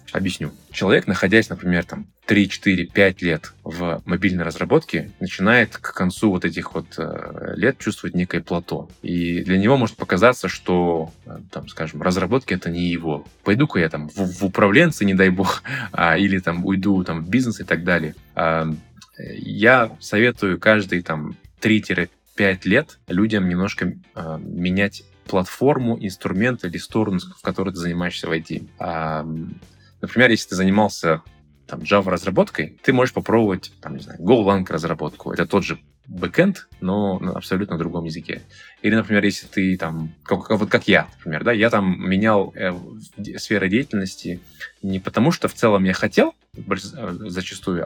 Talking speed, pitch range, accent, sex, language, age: 150 wpm, 85-105 Hz, native, male, Russian, 20-39